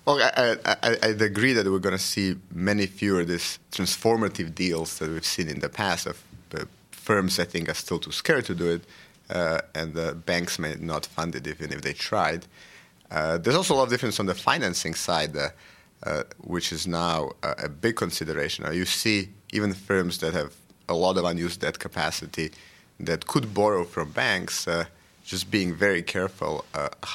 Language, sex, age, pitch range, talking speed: English, male, 30-49, 85-100 Hz, 195 wpm